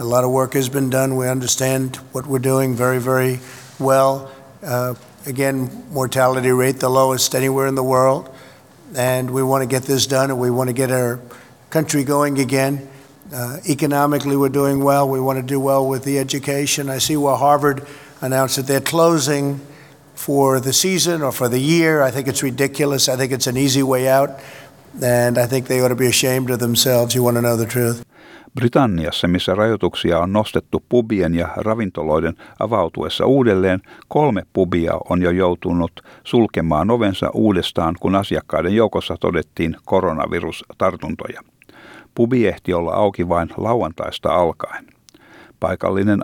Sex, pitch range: male, 120-135 Hz